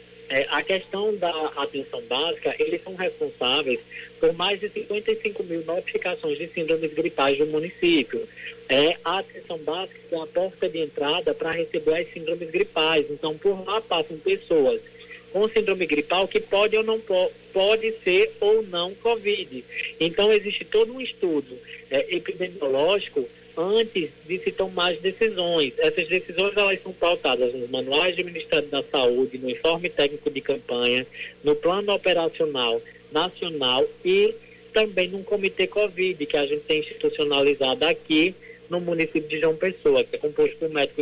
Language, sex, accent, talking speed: Portuguese, male, Brazilian, 155 wpm